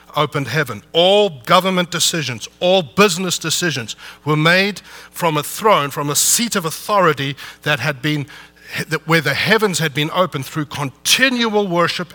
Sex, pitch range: male, 140-180 Hz